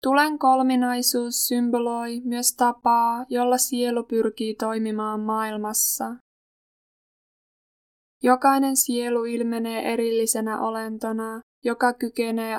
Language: Finnish